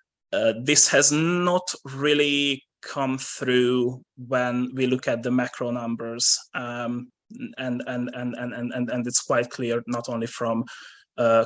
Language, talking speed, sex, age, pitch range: Hungarian, 150 wpm, male, 20-39, 115-125 Hz